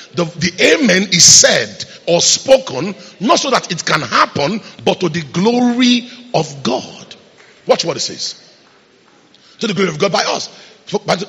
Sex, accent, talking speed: male, Nigerian, 165 wpm